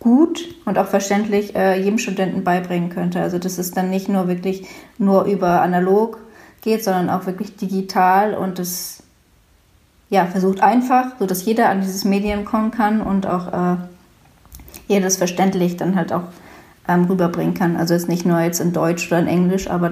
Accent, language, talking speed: German, German, 180 wpm